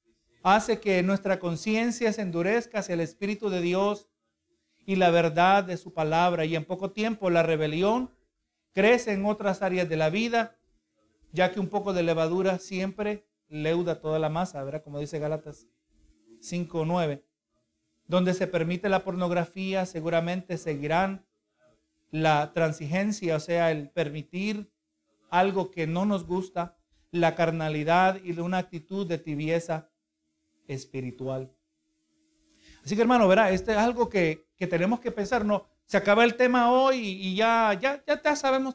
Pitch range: 165-205 Hz